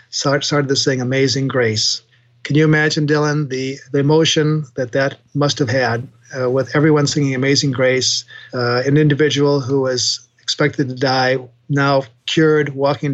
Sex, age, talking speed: male, 40-59, 155 wpm